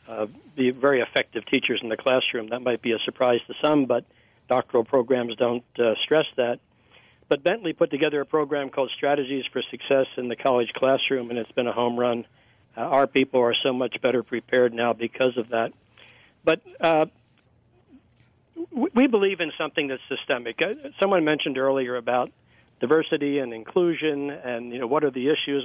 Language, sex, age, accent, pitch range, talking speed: English, male, 60-79, American, 120-145 Hz, 180 wpm